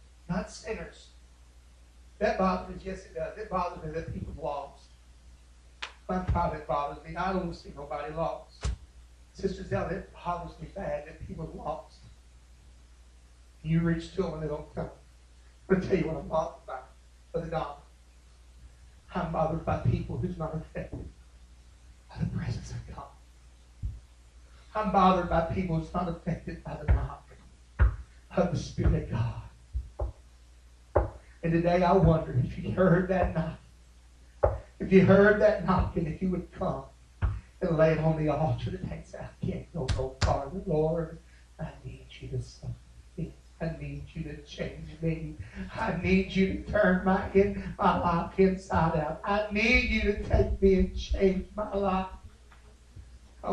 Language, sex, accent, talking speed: English, male, American, 160 wpm